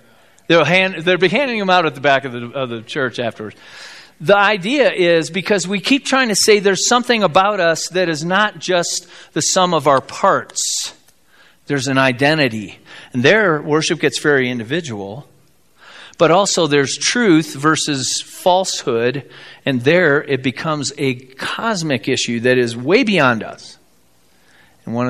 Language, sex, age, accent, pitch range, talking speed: English, male, 40-59, American, 120-170 Hz, 160 wpm